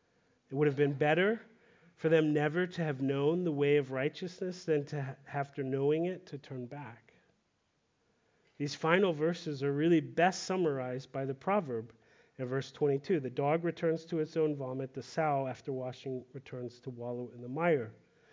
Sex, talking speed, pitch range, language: male, 175 wpm, 135-165 Hz, English